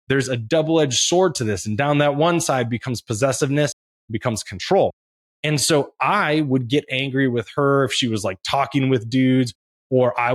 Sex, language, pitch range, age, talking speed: male, English, 120-150 Hz, 20-39, 190 wpm